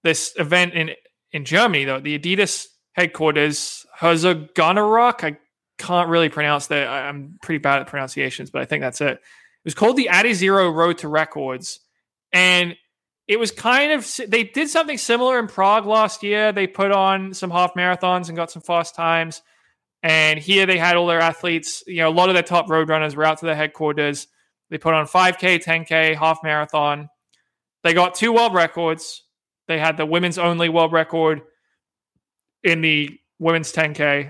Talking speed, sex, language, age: 180 wpm, male, English, 20-39